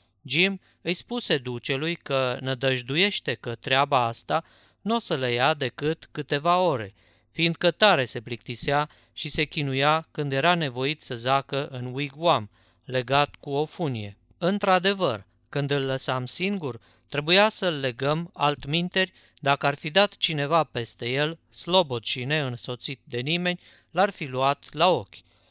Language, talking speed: Romanian, 145 wpm